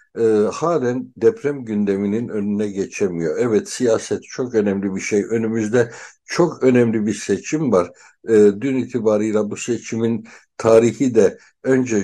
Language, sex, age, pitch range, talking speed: Turkish, male, 60-79, 105-125 Hz, 130 wpm